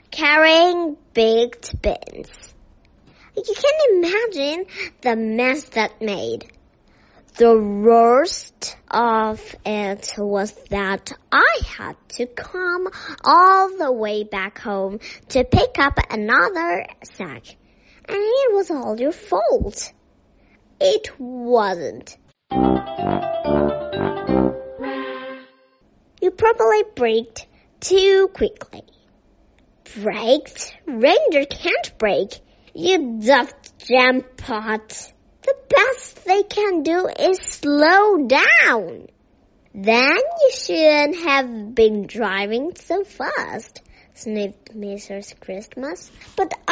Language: Chinese